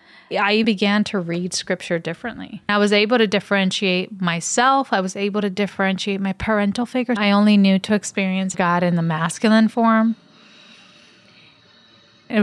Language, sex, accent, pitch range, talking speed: English, female, American, 185-225 Hz, 150 wpm